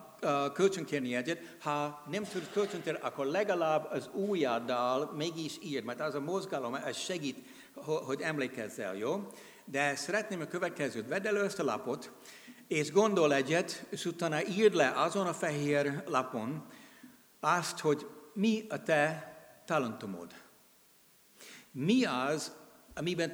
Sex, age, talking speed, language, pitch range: male, 60-79, 130 wpm, Hungarian, 145-195 Hz